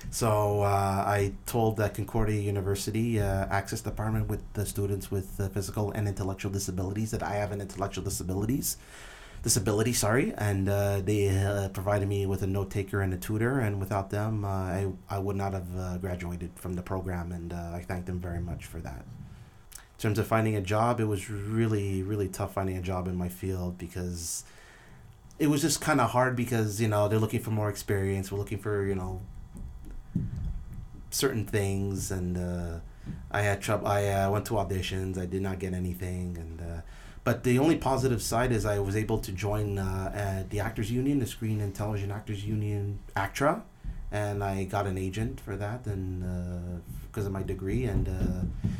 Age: 30-49